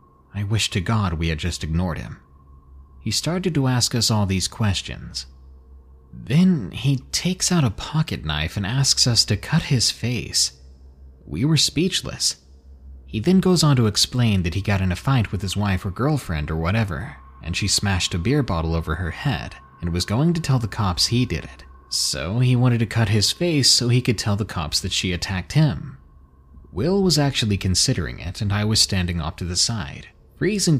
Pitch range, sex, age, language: 80-125 Hz, male, 30-49, English